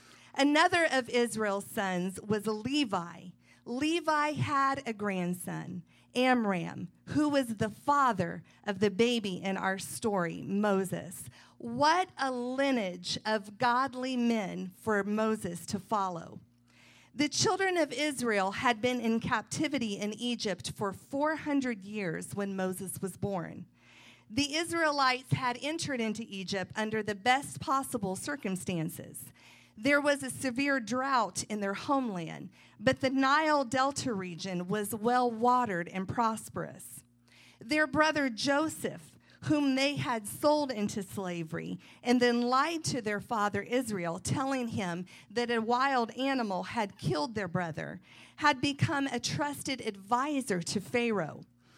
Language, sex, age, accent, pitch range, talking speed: English, female, 40-59, American, 195-270 Hz, 125 wpm